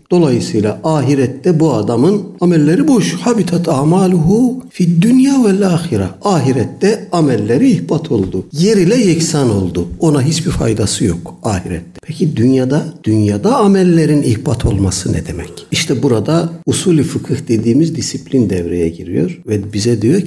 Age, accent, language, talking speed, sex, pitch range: 60-79, native, Turkish, 130 wpm, male, 105-160 Hz